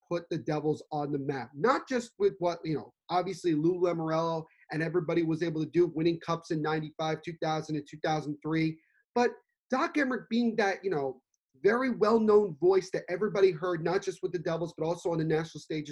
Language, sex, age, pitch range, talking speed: English, male, 30-49, 160-225 Hz, 195 wpm